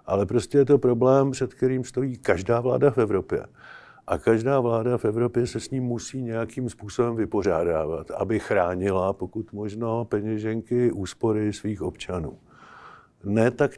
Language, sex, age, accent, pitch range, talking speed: Czech, male, 50-69, native, 105-120 Hz, 150 wpm